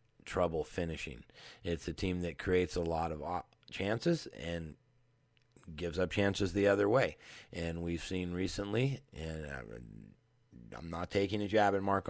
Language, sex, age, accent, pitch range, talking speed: English, male, 30-49, American, 90-120 Hz, 150 wpm